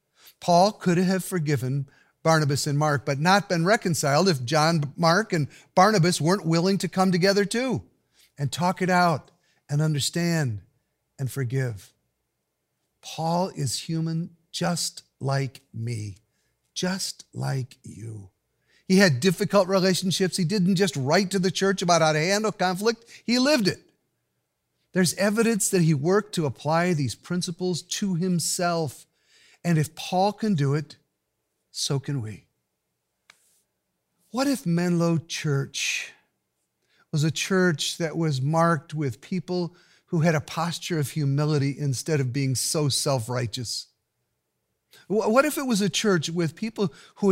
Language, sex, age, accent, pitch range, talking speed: English, male, 50-69, American, 145-190 Hz, 140 wpm